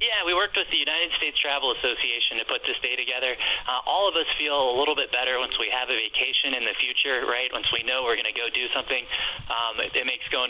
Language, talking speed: English, 265 wpm